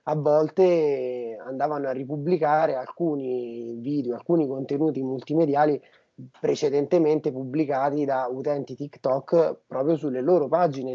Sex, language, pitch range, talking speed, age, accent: male, Italian, 130-160 Hz, 105 wpm, 30-49, native